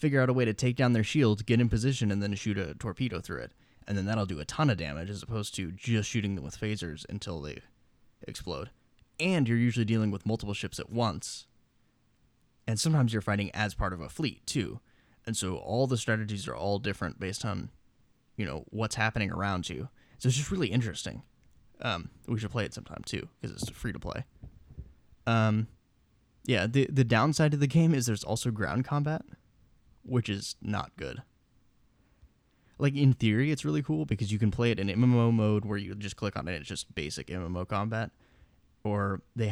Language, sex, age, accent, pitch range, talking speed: English, male, 10-29, American, 100-120 Hz, 205 wpm